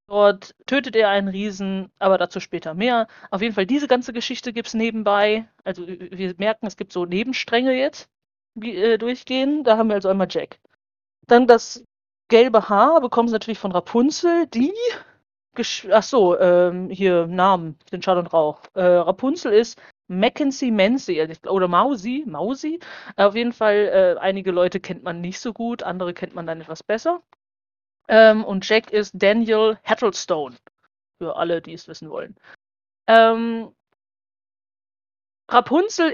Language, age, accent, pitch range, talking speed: German, 40-59, German, 180-240 Hz, 155 wpm